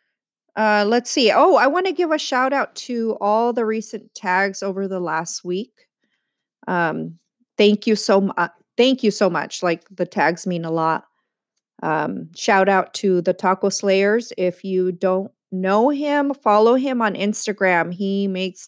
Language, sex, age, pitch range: English, female, 40-59, 185-230 Hz